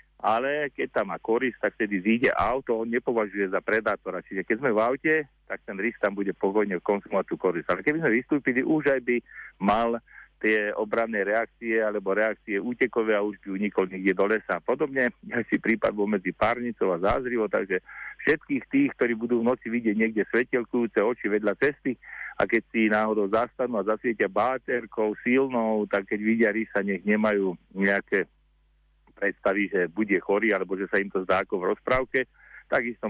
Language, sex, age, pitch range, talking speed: Slovak, male, 50-69, 100-115 Hz, 180 wpm